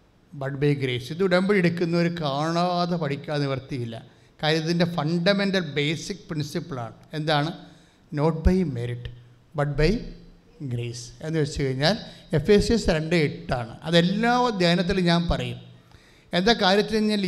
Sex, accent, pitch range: male, Indian, 140-195 Hz